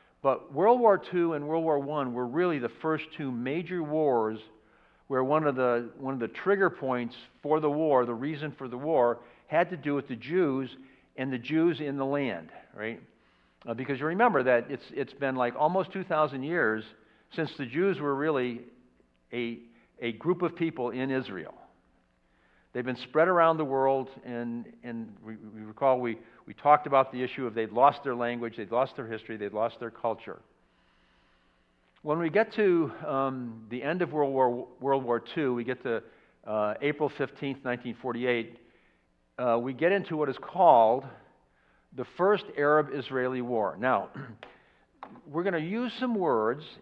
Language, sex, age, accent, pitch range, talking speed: English, male, 60-79, American, 120-155 Hz, 175 wpm